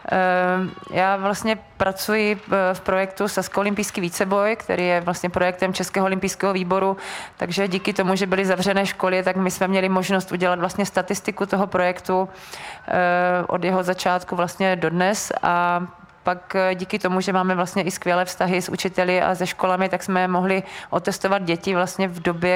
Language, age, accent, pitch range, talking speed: Czech, 30-49, native, 180-195 Hz, 155 wpm